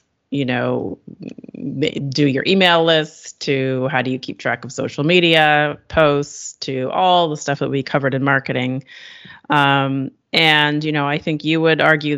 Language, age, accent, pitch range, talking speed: English, 30-49, American, 130-150 Hz, 170 wpm